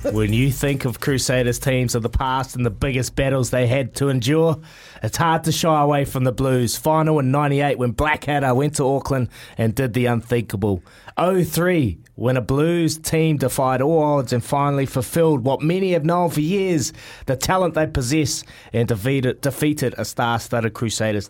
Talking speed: 185 wpm